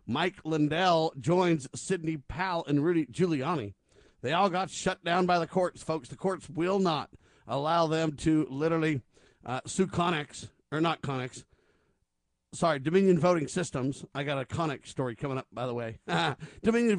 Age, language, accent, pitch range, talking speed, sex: 50-69, English, American, 145-180 Hz, 165 wpm, male